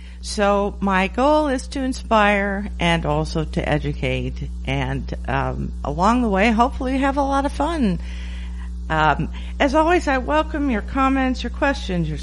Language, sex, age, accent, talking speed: English, female, 50-69, American, 150 wpm